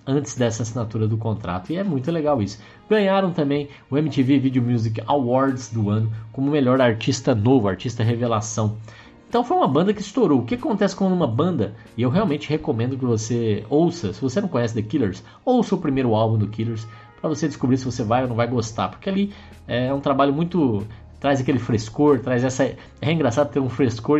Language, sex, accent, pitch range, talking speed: Portuguese, male, Brazilian, 110-145 Hz, 205 wpm